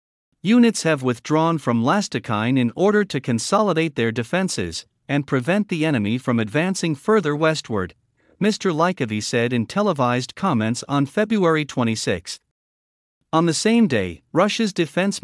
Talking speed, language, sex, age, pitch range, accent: 135 wpm, English, male, 50-69, 115-170 Hz, American